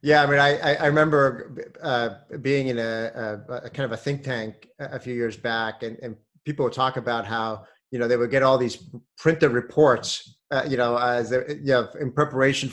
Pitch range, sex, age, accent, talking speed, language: 120-145 Hz, male, 30-49, American, 215 wpm, English